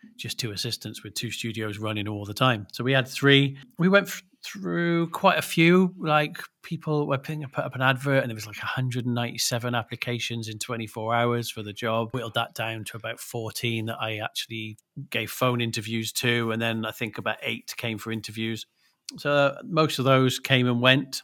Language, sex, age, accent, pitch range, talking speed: English, male, 40-59, British, 115-135 Hz, 195 wpm